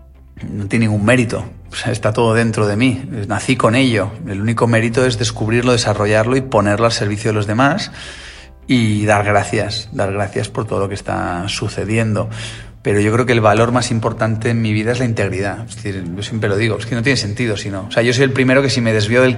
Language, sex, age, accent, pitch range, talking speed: Spanish, male, 30-49, Spanish, 105-120 Hz, 235 wpm